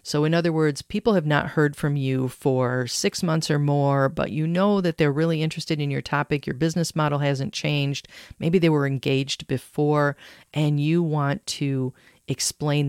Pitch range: 130-155 Hz